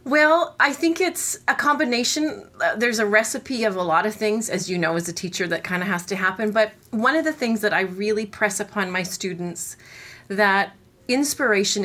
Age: 30-49